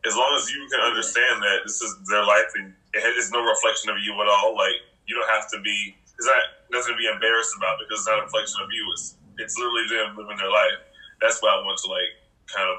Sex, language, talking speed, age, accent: male, English, 250 wpm, 20-39, American